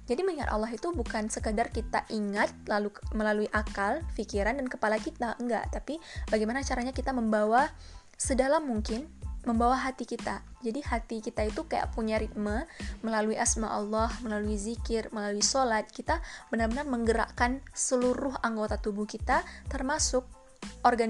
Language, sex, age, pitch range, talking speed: Indonesian, female, 20-39, 220-255 Hz, 140 wpm